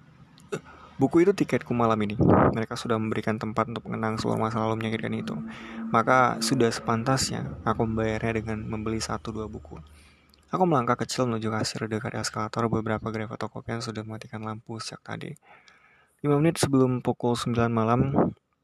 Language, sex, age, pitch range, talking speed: Indonesian, male, 20-39, 110-120 Hz, 155 wpm